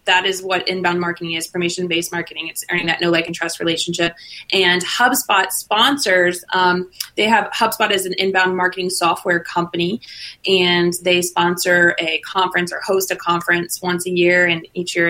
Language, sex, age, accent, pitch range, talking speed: English, female, 20-39, American, 175-195 Hz, 175 wpm